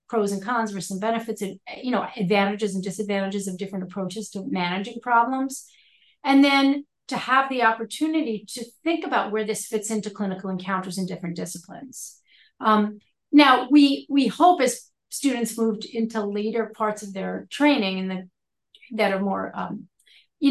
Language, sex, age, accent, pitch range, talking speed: English, female, 40-59, American, 195-235 Hz, 165 wpm